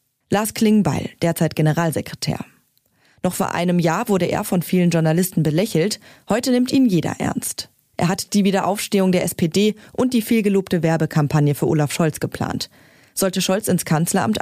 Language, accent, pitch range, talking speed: German, German, 160-215 Hz, 155 wpm